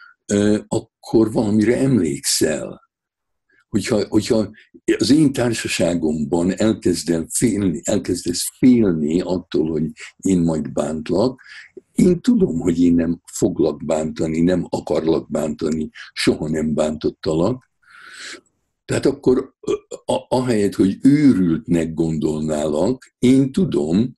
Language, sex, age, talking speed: Hungarian, male, 60-79, 95 wpm